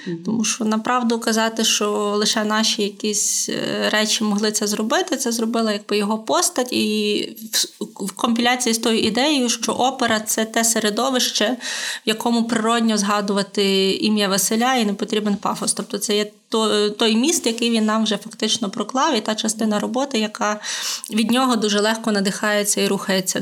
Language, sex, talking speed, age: Ukrainian, female, 155 wpm, 20-39